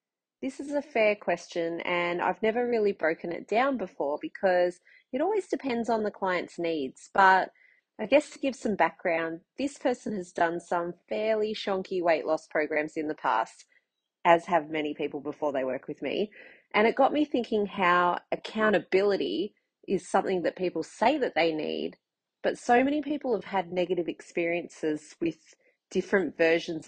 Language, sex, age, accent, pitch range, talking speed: English, female, 30-49, Australian, 165-215 Hz, 170 wpm